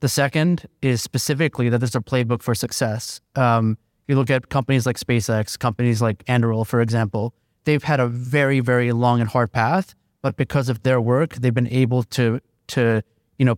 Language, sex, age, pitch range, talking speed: English, male, 30-49, 120-135 Hz, 190 wpm